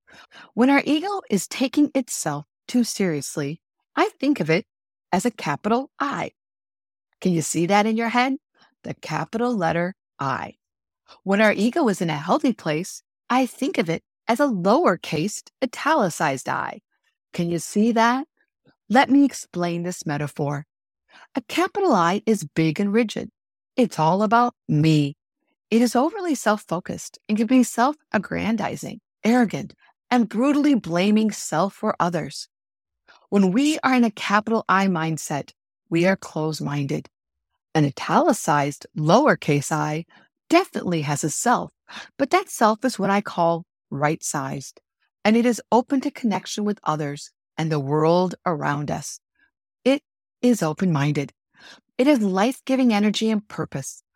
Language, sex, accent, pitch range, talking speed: English, female, American, 165-250 Hz, 140 wpm